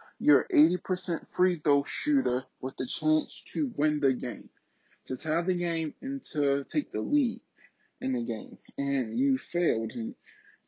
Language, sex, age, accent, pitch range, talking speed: English, male, 30-49, American, 135-170 Hz, 155 wpm